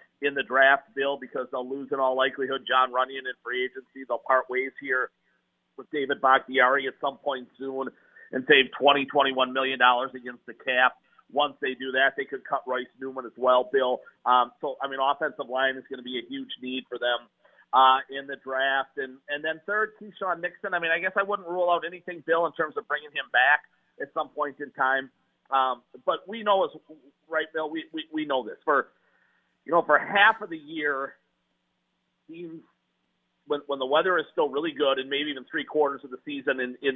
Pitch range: 130-160 Hz